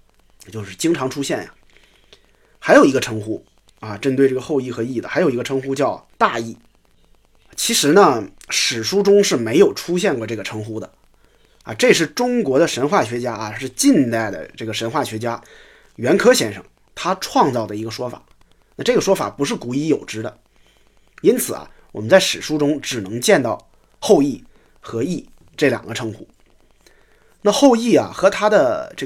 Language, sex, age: Chinese, male, 20-39